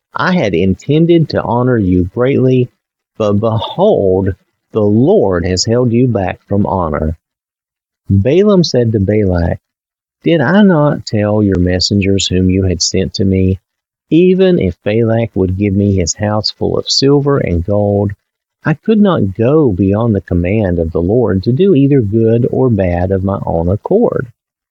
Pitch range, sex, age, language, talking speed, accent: 90-130 Hz, male, 50-69, English, 160 wpm, American